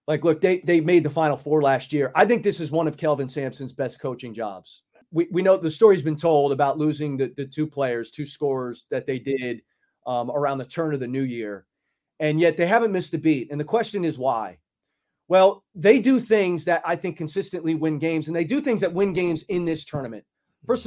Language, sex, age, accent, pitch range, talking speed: English, male, 30-49, American, 150-200 Hz, 230 wpm